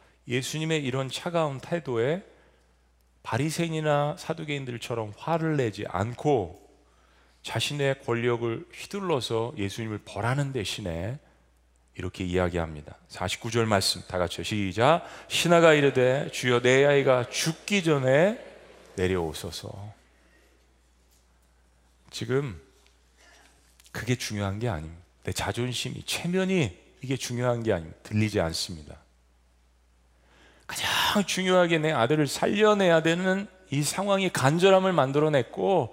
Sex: male